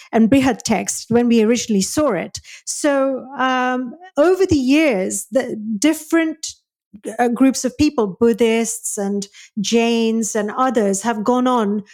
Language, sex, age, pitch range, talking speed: English, female, 40-59, 220-270 Hz, 135 wpm